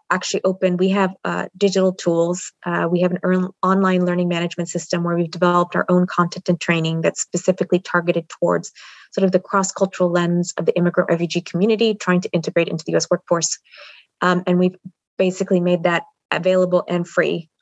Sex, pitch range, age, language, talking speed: female, 175-205 Hz, 20-39, English, 180 wpm